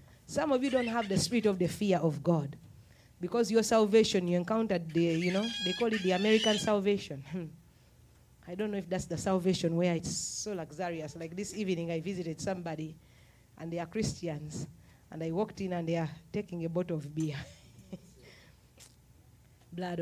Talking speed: 180 wpm